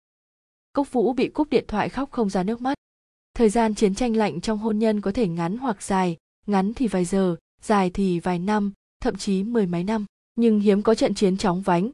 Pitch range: 185-230 Hz